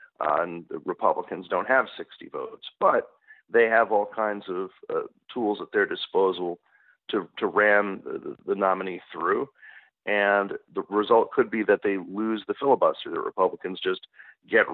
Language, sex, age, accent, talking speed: English, male, 40-59, American, 160 wpm